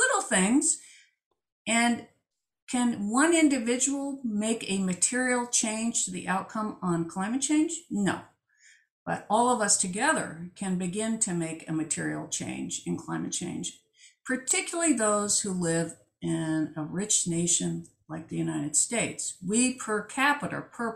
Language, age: English, 50-69